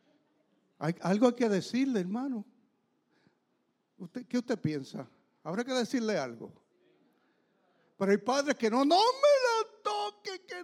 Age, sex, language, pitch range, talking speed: 60-79, male, English, 175-245 Hz, 125 wpm